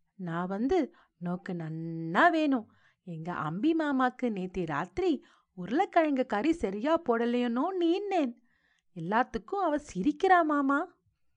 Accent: native